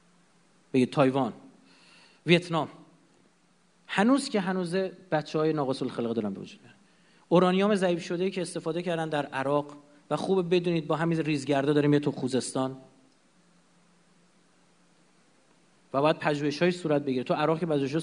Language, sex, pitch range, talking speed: Persian, male, 145-195 Hz, 130 wpm